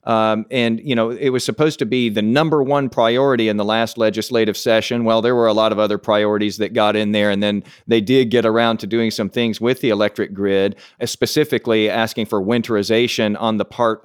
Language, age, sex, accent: English, 40-59, male, American